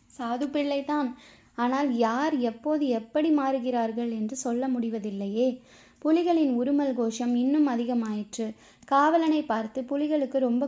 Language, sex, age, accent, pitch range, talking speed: Tamil, female, 20-39, native, 235-280 Hz, 105 wpm